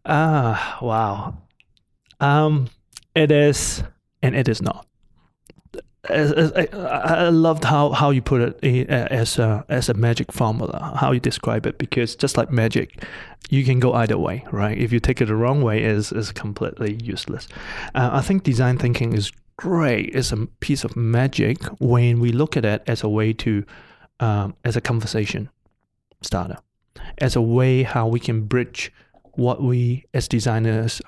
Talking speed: 165 wpm